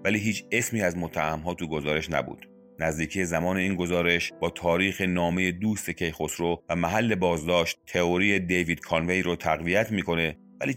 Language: Persian